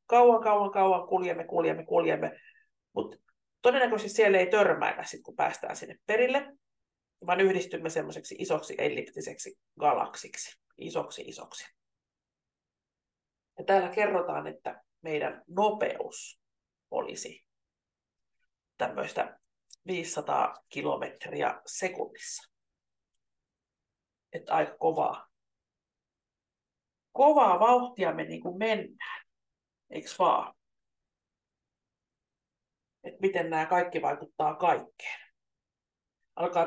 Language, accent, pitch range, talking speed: Finnish, native, 175-245 Hz, 85 wpm